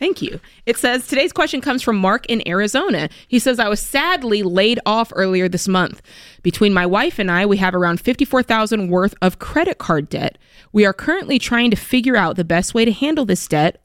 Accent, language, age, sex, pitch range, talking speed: American, English, 20-39, female, 180-225 Hz, 210 wpm